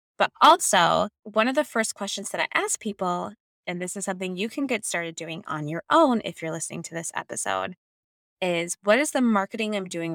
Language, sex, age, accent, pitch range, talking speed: English, female, 20-39, American, 170-235 Hz, 215 wpm